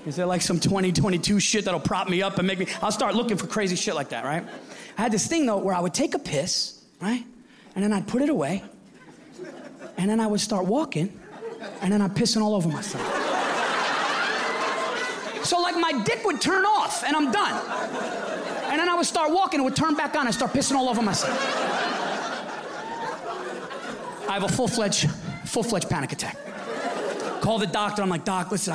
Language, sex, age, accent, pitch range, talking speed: English, male, 30-49, American, 180-260 Hz, 200 wpm